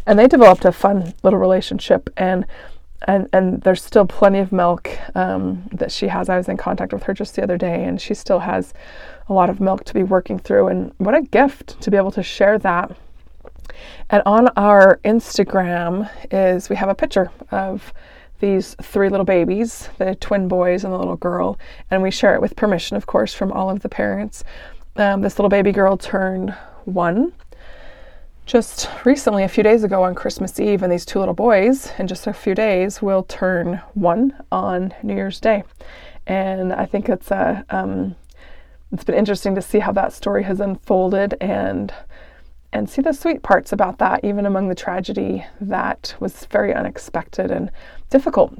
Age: 20-39